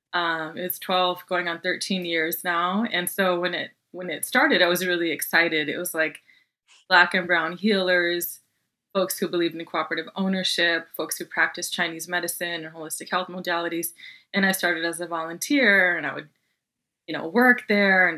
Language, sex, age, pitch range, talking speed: English, female, 20-39, 165-185 Hz, 180 wpm